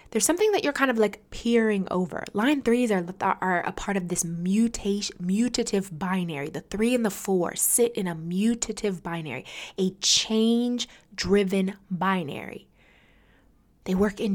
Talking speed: 155 wpm